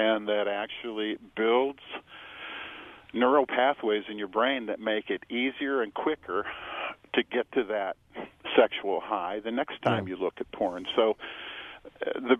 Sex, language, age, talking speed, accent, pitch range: male, English, 50-69, 145 wpm, American, 100-115 Hz